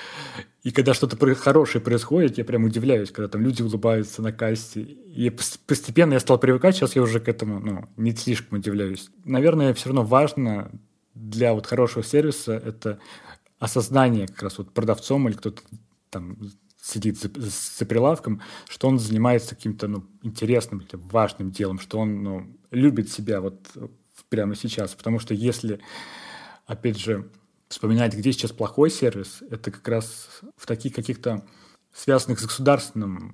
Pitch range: 105-125 Hz